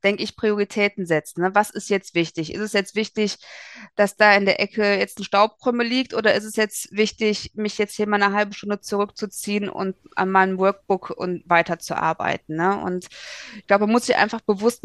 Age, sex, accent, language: 20-39, female, German, German